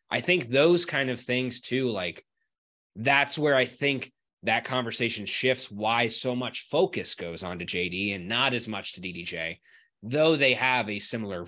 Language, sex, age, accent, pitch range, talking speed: English, male, 20-39, American, 120-165 Hz, 180 wpm